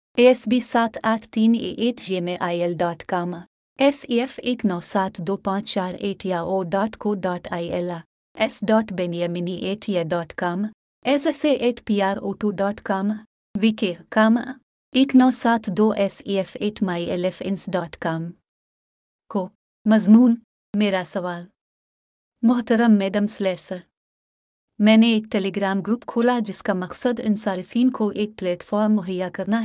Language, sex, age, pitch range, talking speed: English, female, 30-49, 185-220 Hz, 105 wpm